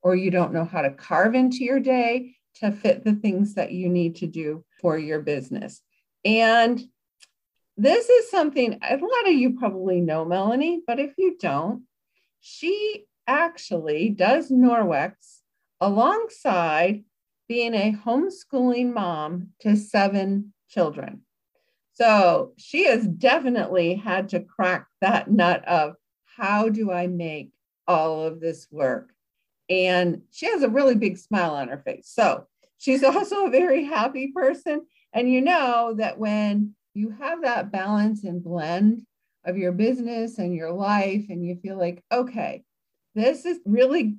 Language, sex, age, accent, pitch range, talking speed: English, female, 50-69, American, 180-255 Hz, 150 wpm